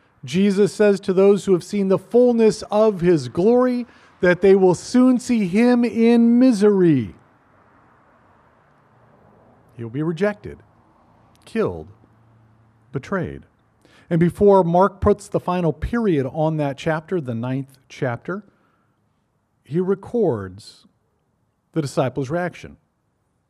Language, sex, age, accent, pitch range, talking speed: English, male, 50-69, American, 150-220 Hz, 110 wpm